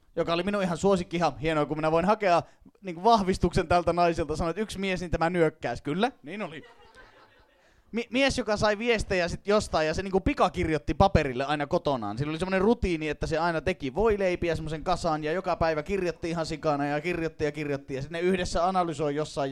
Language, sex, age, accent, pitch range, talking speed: Finnish, male, 30-49, native, 155-205 Hz, 205 wpm